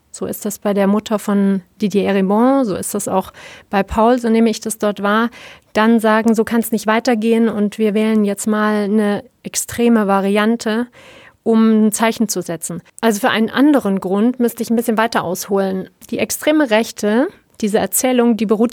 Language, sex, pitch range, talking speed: German, female, 195-235 Hz, 190 wpm